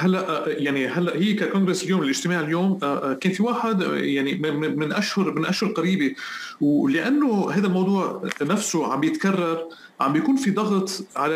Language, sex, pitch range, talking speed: Arabic, male, 160-215 Hz, 150 wpm